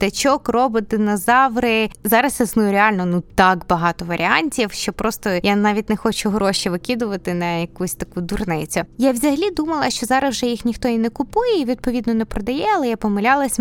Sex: female